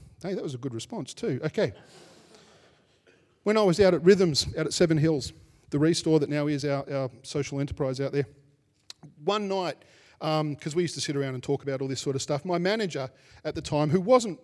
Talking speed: 220 wpm